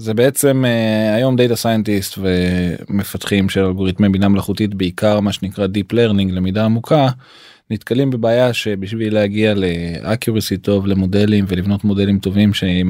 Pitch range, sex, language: 100-120 Hz, male, Hebrew